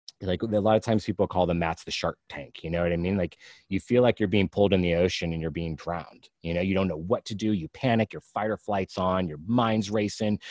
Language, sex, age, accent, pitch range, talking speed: English, male, 30-49, American, 90-115 Hz, 275 wpm